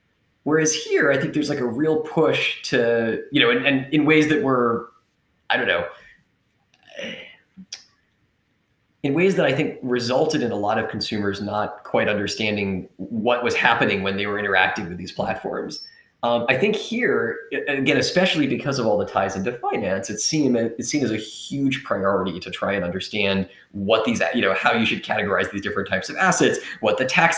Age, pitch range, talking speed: 30-49, 105-140 Hz, 185 wpm